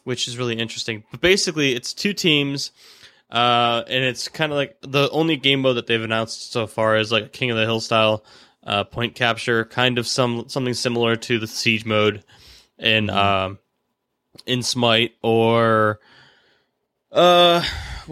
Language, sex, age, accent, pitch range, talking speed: English, male, 10-29, American, 110-130 Hz, 160 wpm